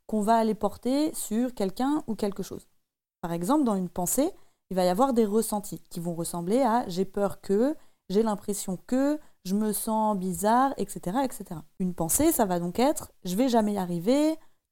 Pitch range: 200-265 Hz